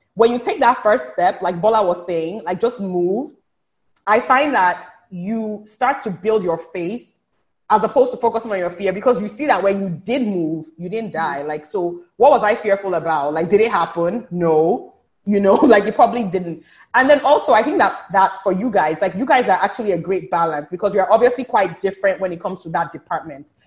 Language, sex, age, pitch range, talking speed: English, female, 20-39, 180-235 Hz, 220 wpm